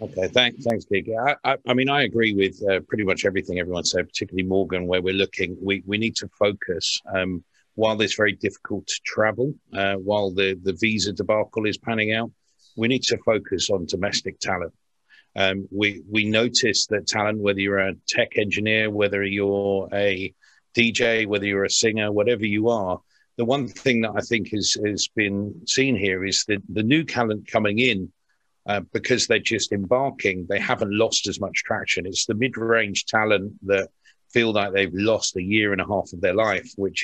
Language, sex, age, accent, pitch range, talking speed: English, male, 50-69, British, 95-115 Hz, 195 wpm